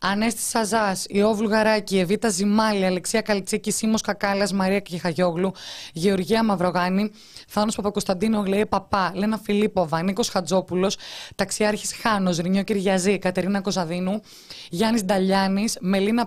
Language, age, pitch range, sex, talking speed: Greek, 20-39, 190-220 Hz, female, 120 wpm